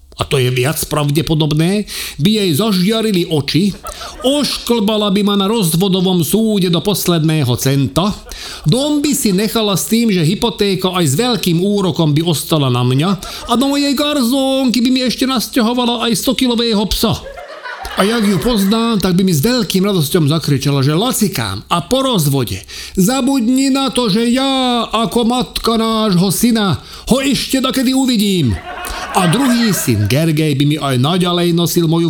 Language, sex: Slovak, male